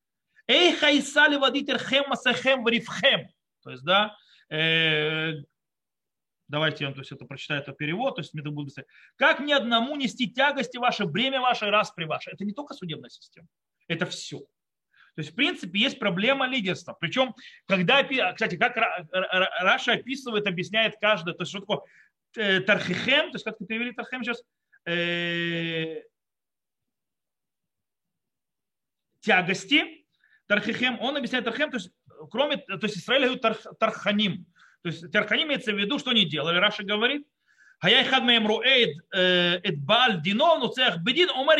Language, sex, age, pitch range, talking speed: Russian, male, 30-49, 180-260 Hz, 120 wpm